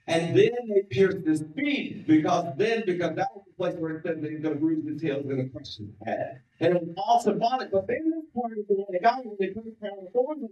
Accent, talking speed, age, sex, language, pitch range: American, 275 wpm, 50-69, male, English, 150-240 Hz